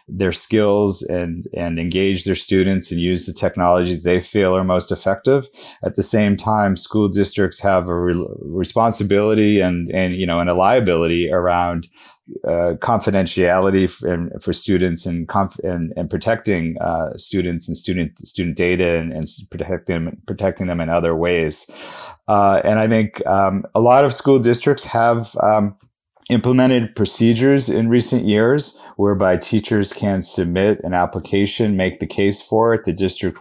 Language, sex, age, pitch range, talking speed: English, male, 30-49, 90-105 Hz, 160 wpm